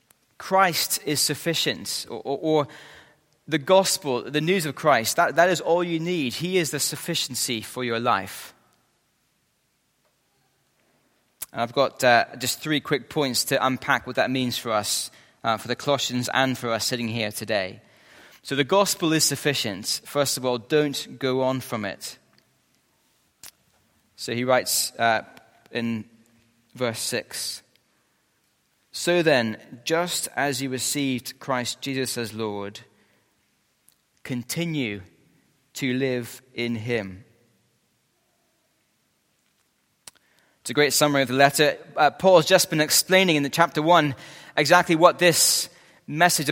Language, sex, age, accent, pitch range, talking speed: English, male, 20-39, British, 125-165 Hz, 135 wpm